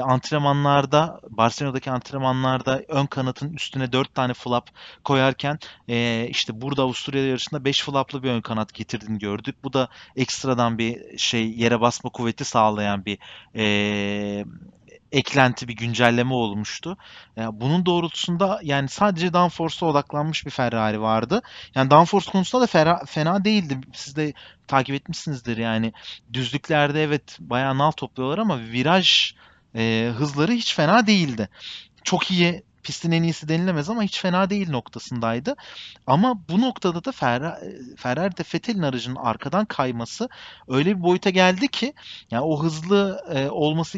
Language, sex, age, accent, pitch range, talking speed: Turkish, male, 30-49, native, 120-165 Hz, 135 wpm